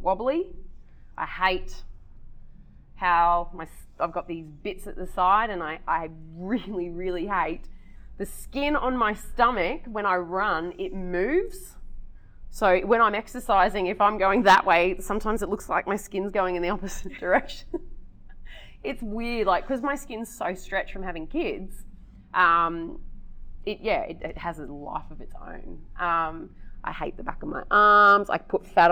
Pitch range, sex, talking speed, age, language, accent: 175-230 Hz, female, 170 wpm, 20-39, English, Australian